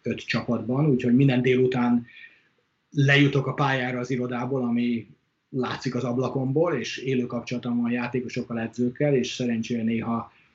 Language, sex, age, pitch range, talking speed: Hungarian, male, 30-49, 115-130 Hz, 130 wpm